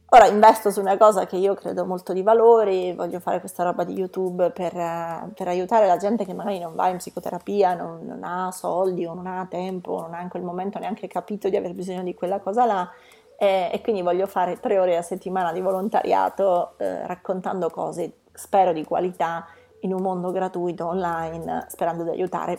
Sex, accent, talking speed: female, native, 200 wpm